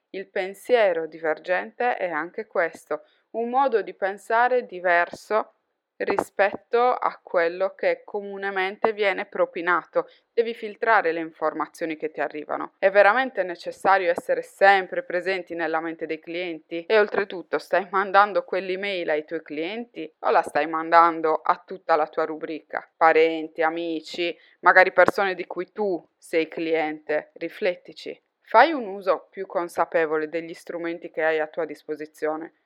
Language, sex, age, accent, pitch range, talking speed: Italian, female, 20-39, native, 165-215 Hz, 135 wpm